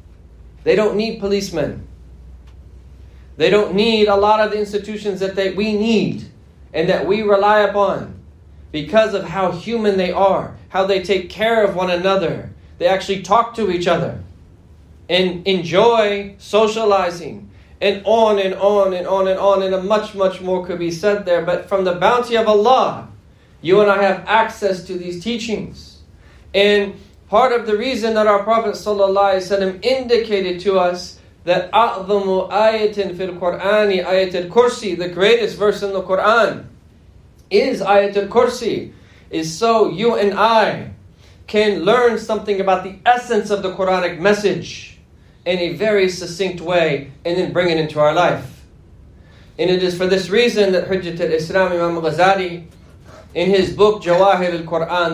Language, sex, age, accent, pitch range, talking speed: English, male, 30-49, American, 170-205 Hz, 155 wpm